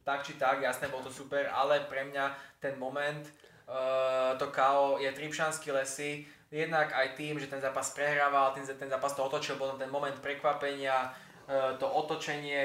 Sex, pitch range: male, 135-145 Hz